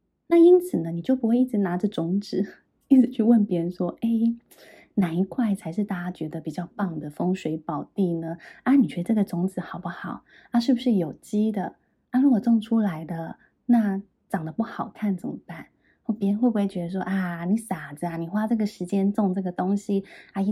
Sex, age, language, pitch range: female, 20-39, Chinese, 175-225 Hz